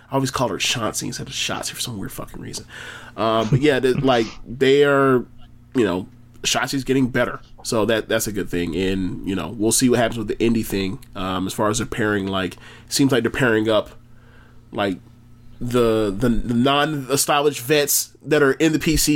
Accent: American